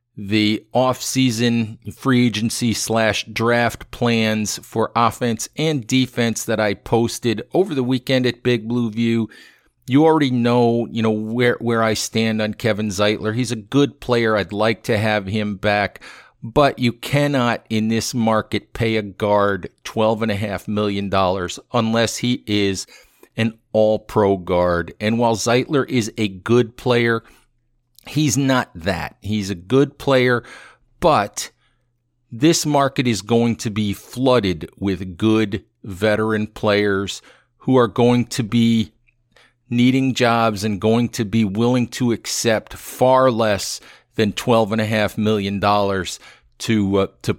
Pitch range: 105-120 Hz